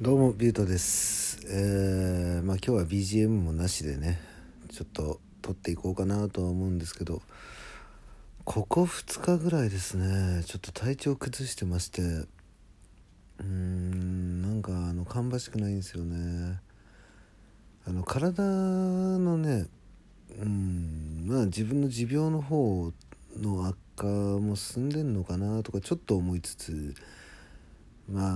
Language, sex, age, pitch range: Japanese, male, 40-59, 90-110 Hz